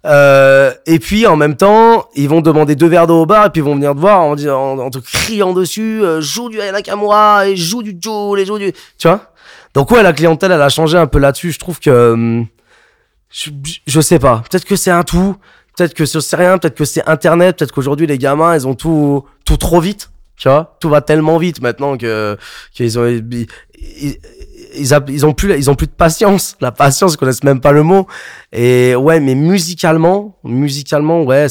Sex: male